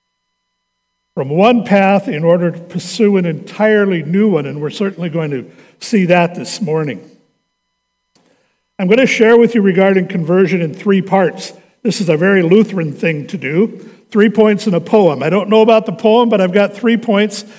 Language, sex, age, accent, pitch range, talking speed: English, male, 60-79, American, 175-215 Hz, 190 wpm